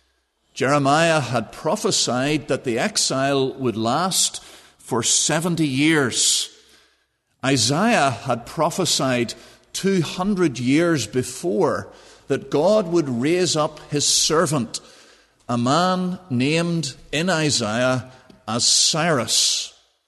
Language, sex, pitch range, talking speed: English, male, 120-155 Hz, 95 wpm